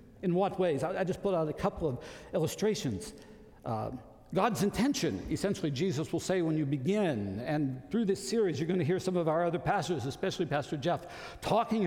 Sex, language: male, English